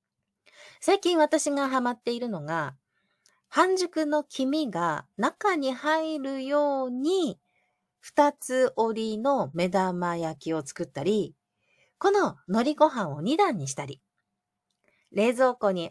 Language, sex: Japanese, female